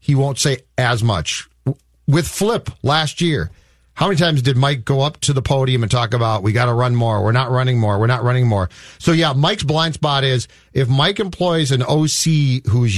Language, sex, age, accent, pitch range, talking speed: English, male, 40-59, American, 115-150 Hz, 215 wpm